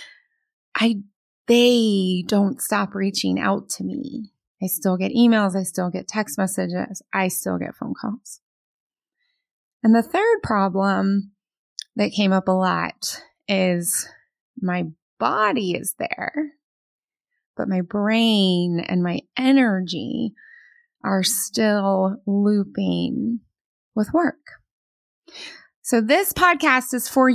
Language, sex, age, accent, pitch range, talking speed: English, female, 20-39, American, 195-265 Hz, 115 wpm